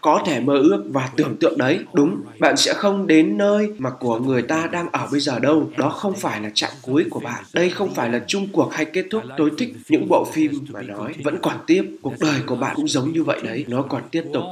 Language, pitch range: Vietnamese, 125-160 Hz